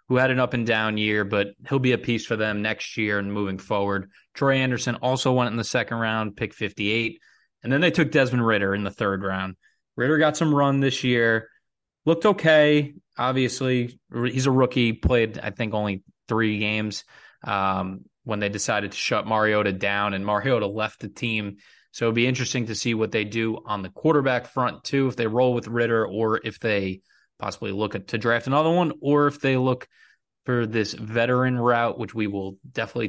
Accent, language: American, English